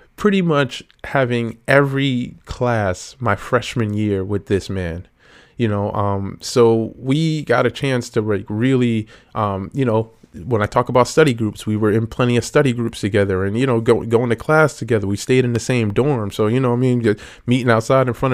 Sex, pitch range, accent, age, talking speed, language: male, 105-130 Hz, American, 20-39, 205 wpm, English